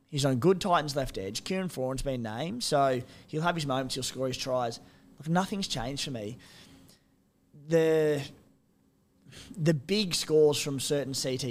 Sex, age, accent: male, 20-39, Australian